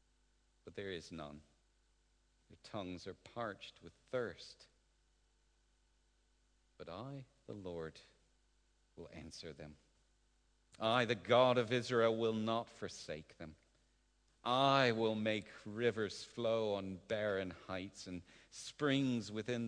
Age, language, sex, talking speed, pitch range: 50-69, English, male, 115 wpm, 90-120 Hz